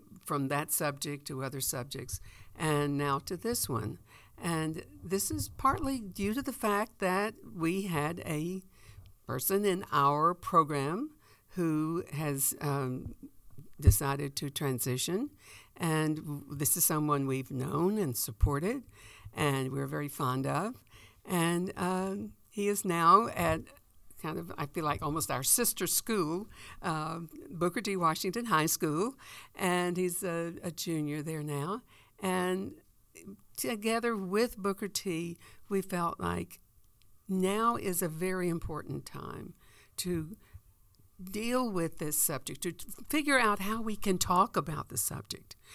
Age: 60-79